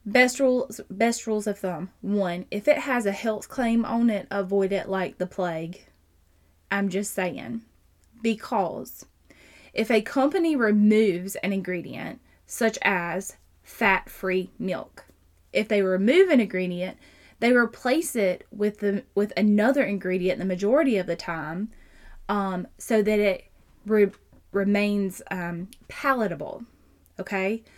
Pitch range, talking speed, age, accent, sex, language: 185-230 Hz, 130 wpm, 20-39, American, female, English